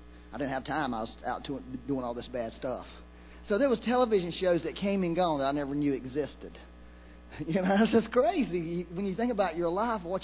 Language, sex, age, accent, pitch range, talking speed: English, male, 40-59, American, 140-195 Hz, 225 wpm